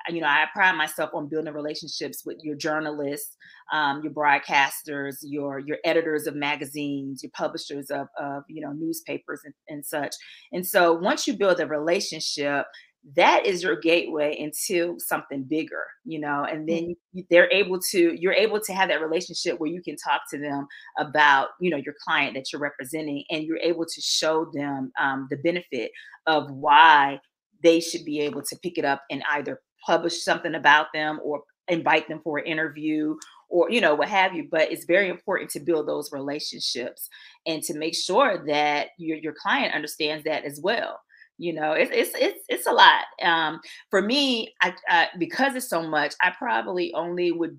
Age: 30-49